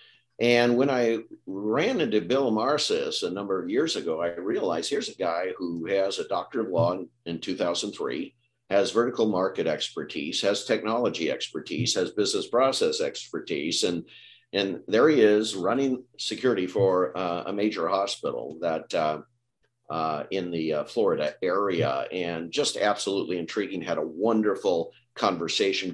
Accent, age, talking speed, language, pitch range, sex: American, 50-69, 150 wpm, English, 90-120 Hz, male